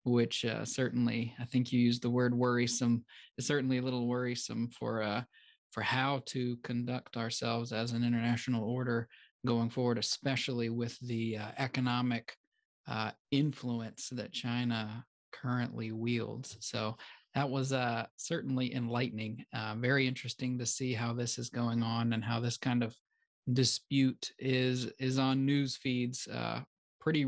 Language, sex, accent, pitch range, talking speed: English, male, American, 120-135 Hz, 150 wpm